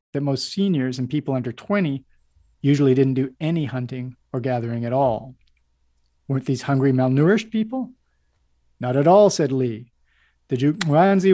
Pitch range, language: 125-165 Hz, English